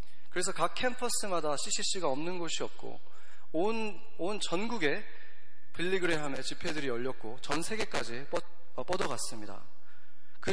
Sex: male